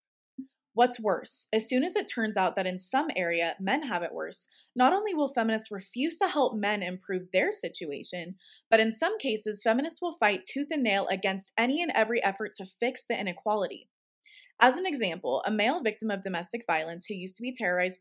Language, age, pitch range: English, 20-39, 180-235 Hz